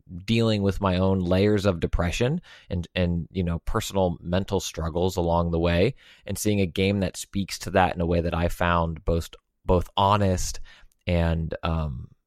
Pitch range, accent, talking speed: 90-105 Hz, American, 175 wpm